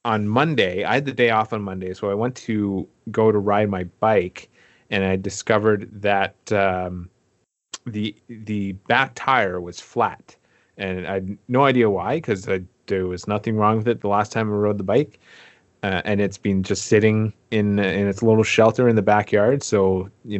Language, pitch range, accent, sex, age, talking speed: English, 100-115 Hz, American, male, 30-49, 190 wpm